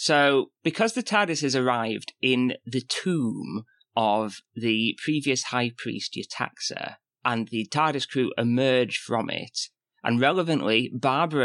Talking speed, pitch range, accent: 130 wpm, 115-150 Hz, British